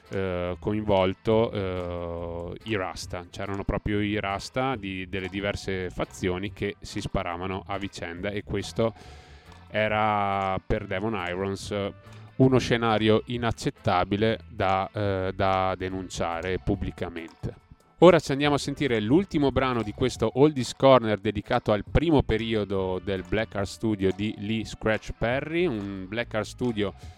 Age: 30-49